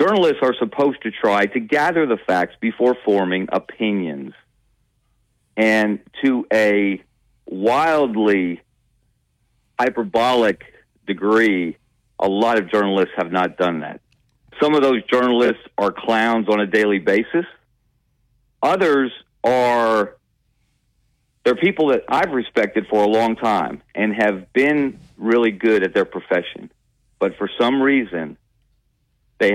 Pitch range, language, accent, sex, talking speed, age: 100-120 Hz, English, American, male, 120 wpm, 40-59